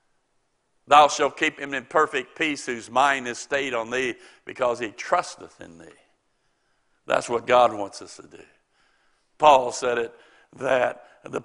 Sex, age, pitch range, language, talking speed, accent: male, 60-79, 130-155 Hz, English, 155 wpm, American